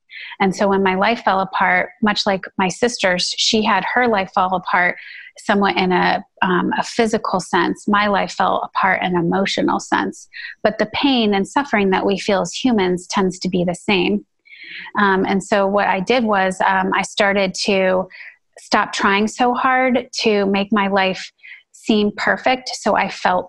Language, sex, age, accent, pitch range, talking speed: English, female, 30-49, American, 190-215 Hz, 180 wpm